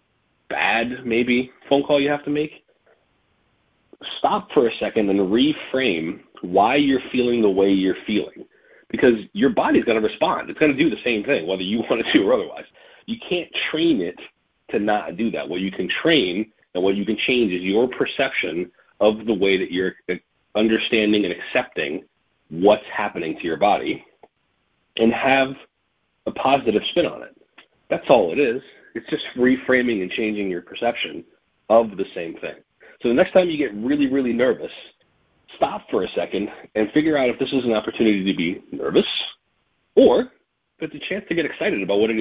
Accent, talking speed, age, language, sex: American, 185 wpm, 40-59, English, male